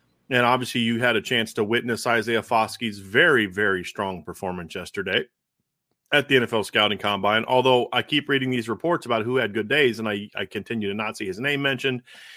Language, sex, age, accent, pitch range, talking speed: English, male, 30-49, American, 110-140 Hz, 200 wpm